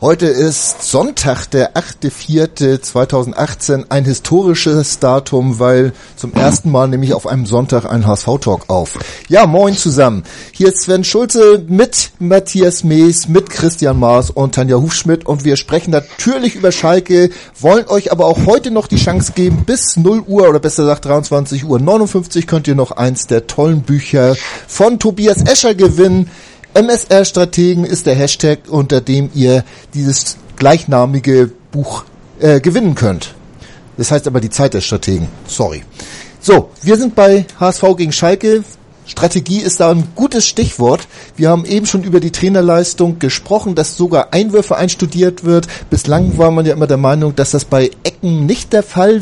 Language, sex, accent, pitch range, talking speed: German, male, German, 135-190 Hz, 160 wpm